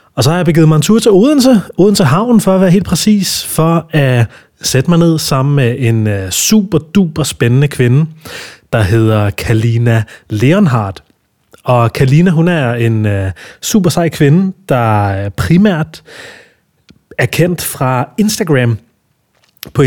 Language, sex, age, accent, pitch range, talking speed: Danish, male, 30-49, native, 115-160 Hz, 140 wpm